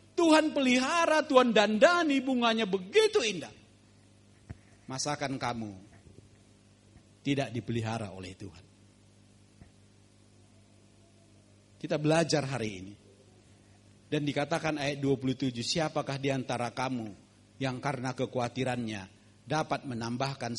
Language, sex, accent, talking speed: Indonesian, male, native, 85 wpm